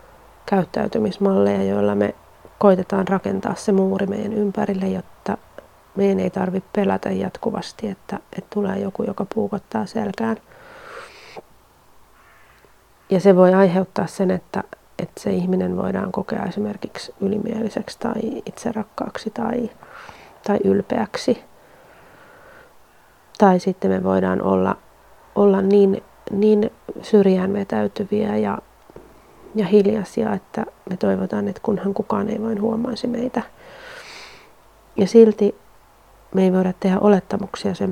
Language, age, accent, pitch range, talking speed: Finnish, 30-49, native, 190-220 Hz, 110 wpm